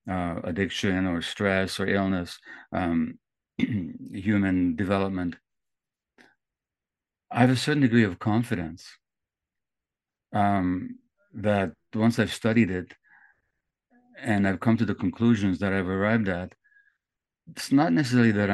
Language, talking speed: English, 115 wpm